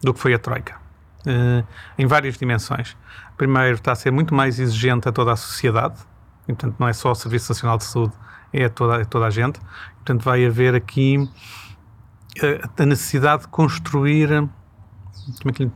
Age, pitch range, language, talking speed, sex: 40-59, 115-145 Hz, Portuguese, 185 wpm, male